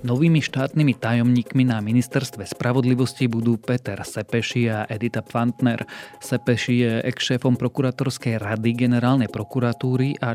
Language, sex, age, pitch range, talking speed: Slovak, male, 30-49, 110-130 Hz, 120 wpm